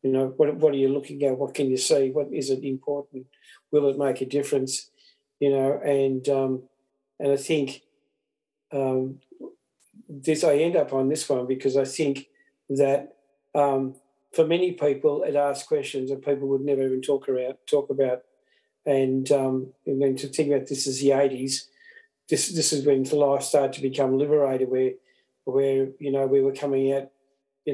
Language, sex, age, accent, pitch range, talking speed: English, male, 50-69, Australian, 135-145 Hz, 185 wpm